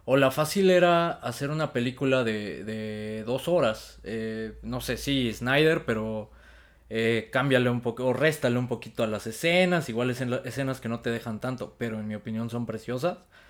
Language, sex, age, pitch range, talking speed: Spanish, male, 20-39, 115-145 Hz, 200 wpm